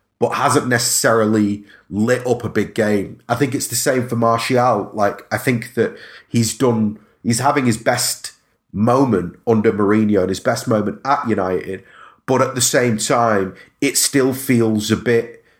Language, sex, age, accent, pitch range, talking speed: English, male, 30-49, British, 110-125 Hz, 170 wpm